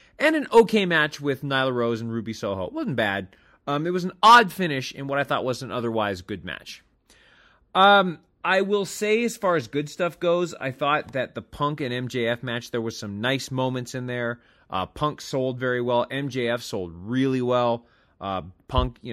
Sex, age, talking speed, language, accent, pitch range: male, 30-49, 205 wpm, English, American, 115-170 Hz